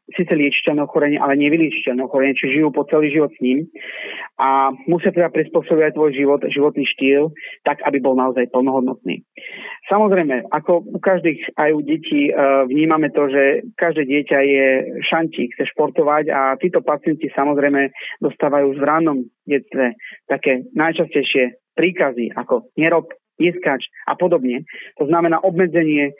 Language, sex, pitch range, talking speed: Slovak, male, 135-160 Hz, 135 wpm